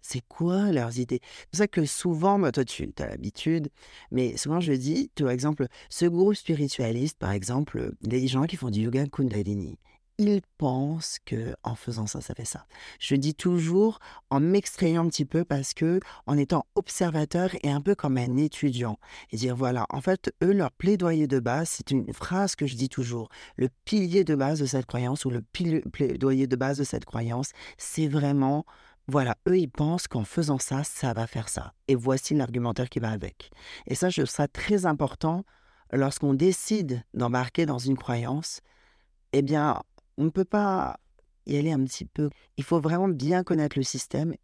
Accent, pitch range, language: French, 130-165 Hz, French